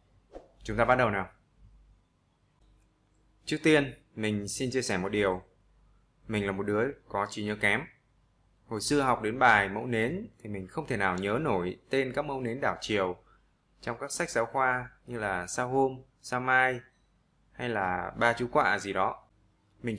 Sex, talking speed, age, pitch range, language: male, 180 wpm, 20-39, 105-130 Hz, Vietnamese